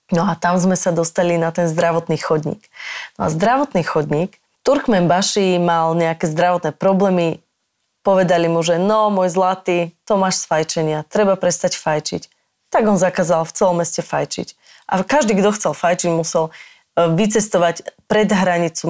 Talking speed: 155 wpm